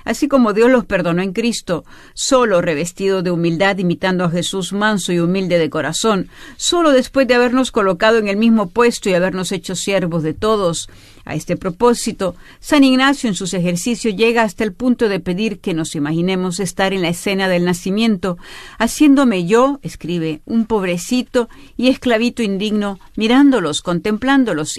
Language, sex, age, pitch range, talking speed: Spanish, female, 50-69, 180-230 Hz, 160 wpm